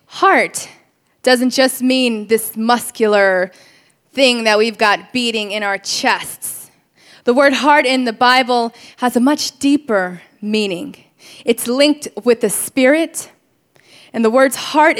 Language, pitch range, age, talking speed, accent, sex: English, 225-280 Hz, 20-39, 135 wpm, American, female